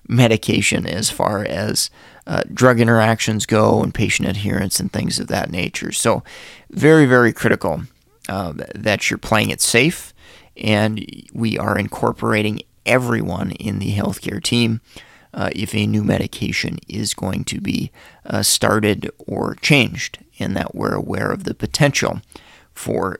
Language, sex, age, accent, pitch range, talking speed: English, male, 30-49, American, 110-130 Hz, 145 wpm